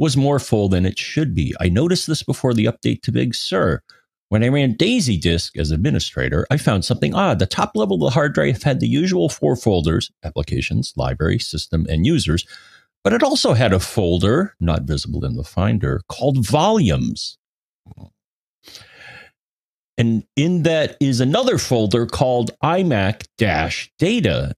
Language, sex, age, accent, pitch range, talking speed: English, male, 40-59, American, 85-125 Hz, 160 wpm